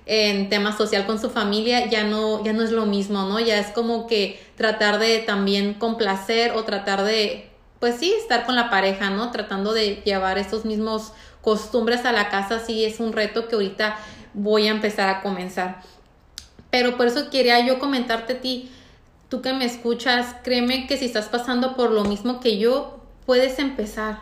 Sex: female